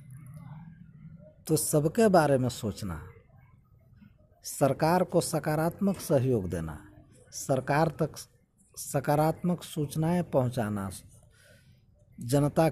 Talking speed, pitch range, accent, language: 75 wpm, 120-180 Hz, native, Hindi